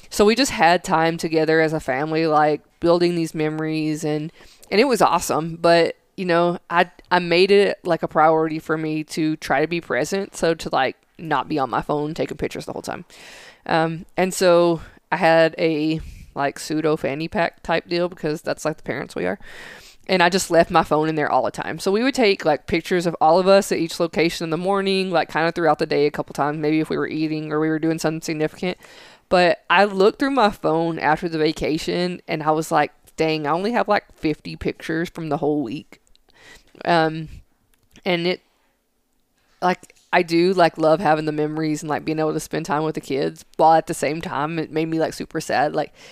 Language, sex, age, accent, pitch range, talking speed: English, female, 20-39, American, 155-175 Hz, 225 wpm